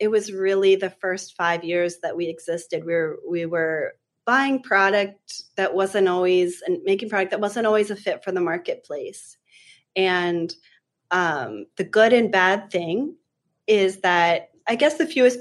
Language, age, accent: English, 30-49, American